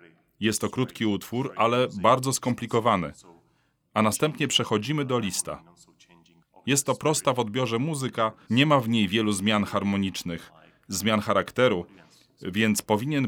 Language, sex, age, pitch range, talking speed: Polish, male, 30-49, 100-135 Hz, 130 wpm